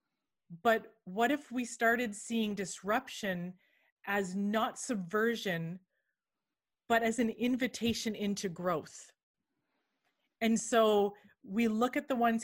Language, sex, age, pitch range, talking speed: English, female, 30-49, 200-250 Hz, 110 wpm